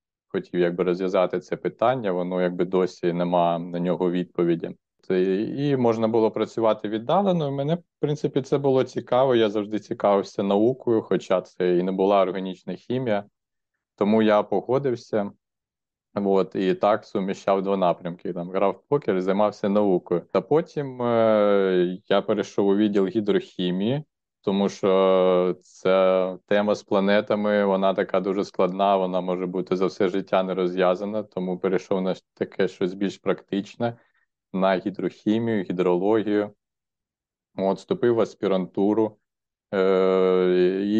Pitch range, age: 90-105 Hz, 20-39